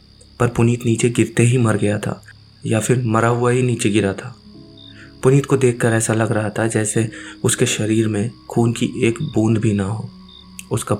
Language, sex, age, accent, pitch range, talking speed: Hindi, male, 20-39, native, 105-120 Hz, 185 wpm